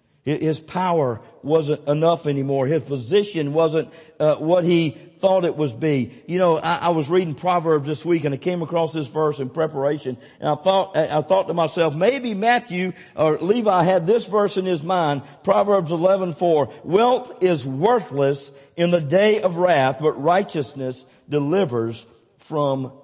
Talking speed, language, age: 165 wpm, English, 50-69